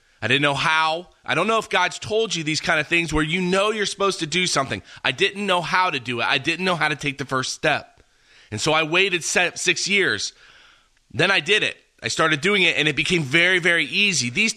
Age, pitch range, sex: 30-49, 150-185 Hz, male